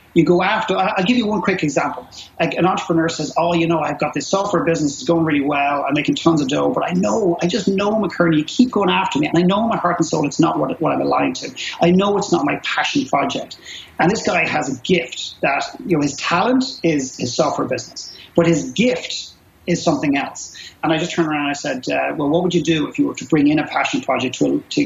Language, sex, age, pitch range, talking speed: English, male, 40-59, 150-190 Hz, 265 wpm